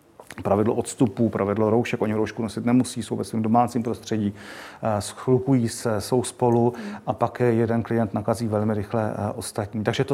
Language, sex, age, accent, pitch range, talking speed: Czech, male, 40-59, native, 110-125 Hz, 160 wpm